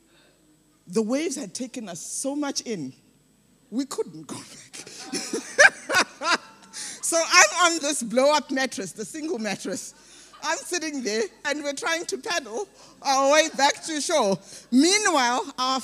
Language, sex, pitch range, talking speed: English, female, 225-295 Hz, 135 wpm